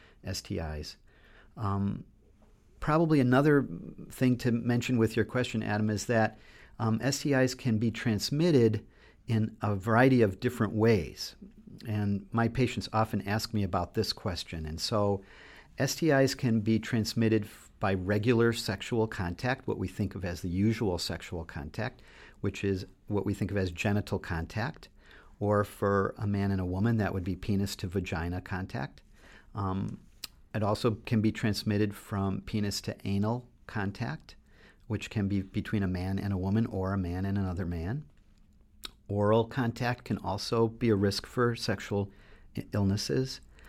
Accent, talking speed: American, 150 wpm